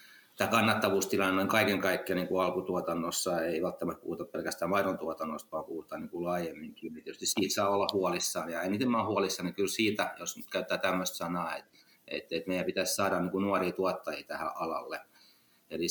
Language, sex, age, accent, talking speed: Finnish, male, 30-49, native, 165 wpm